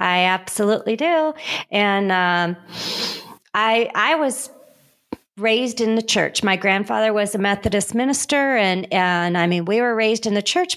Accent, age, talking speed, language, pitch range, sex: American, 40-59, 155 wpm, English, 185-225 Hz, female